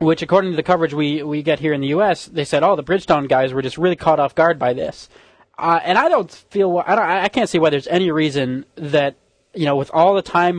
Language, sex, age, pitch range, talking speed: English, male, 20-39, 140-170 Hz, 270 wpm